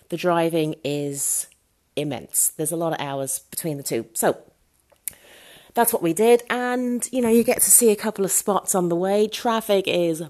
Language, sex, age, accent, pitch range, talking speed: English, female, 30-49, British, 160-215 Hz, 190 wpm